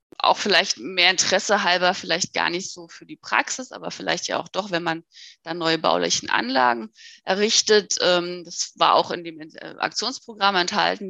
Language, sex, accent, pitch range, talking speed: German, female, German, 170-210 Hz, 170 wpm